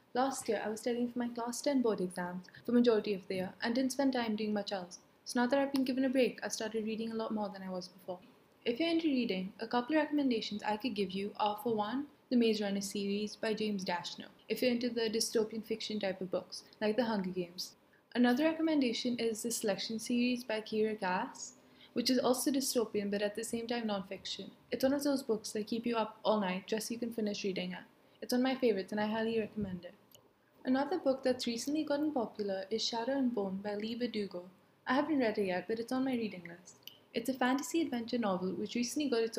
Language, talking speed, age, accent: English, 240 wpm, 20-39, Indian